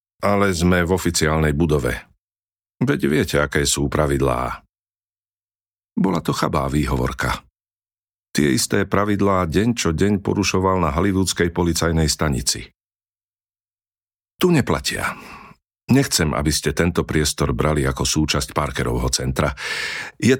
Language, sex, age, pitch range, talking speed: Slovak, male, 50-69, 75-100 Hz, 110 wpm